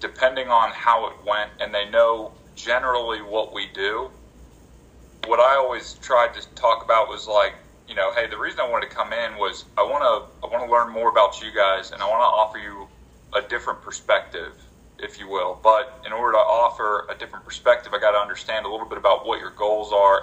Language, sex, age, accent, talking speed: English, male, 30-49, American, 225 wpm